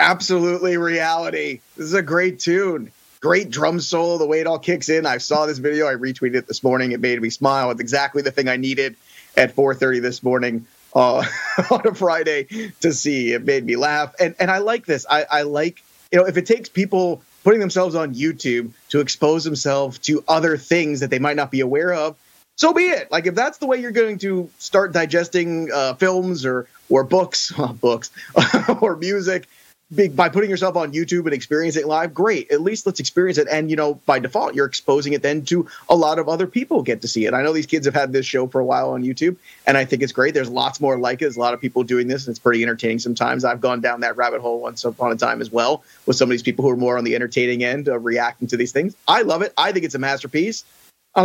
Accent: American